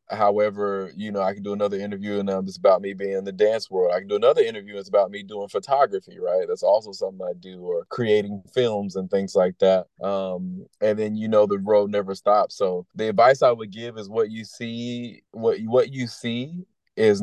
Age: 20-39